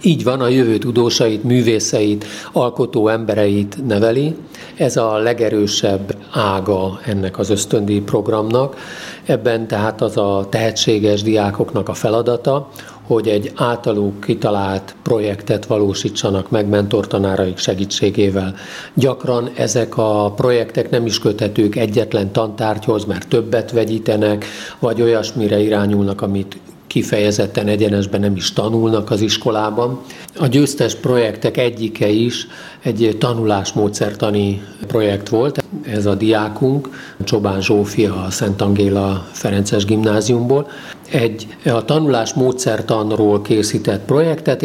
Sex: male